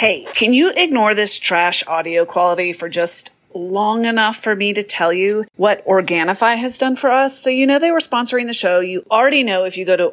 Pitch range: 180-270 Hz